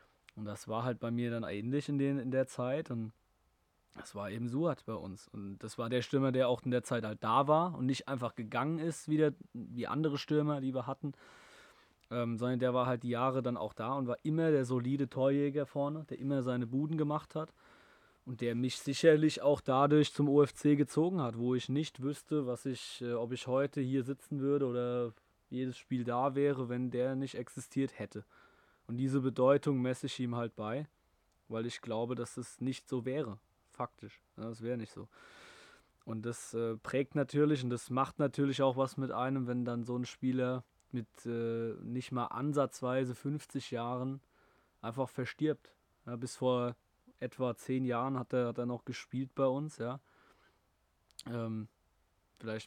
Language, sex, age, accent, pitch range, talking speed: German, male, 20-39, German, 115-140 Hz, 185 wpm